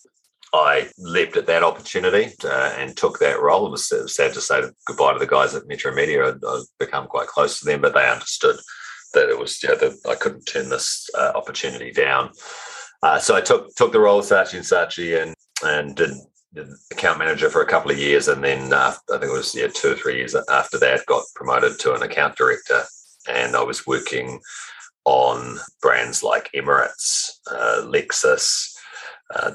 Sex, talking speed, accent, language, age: male, 200 wpm, Australian, English, 40-59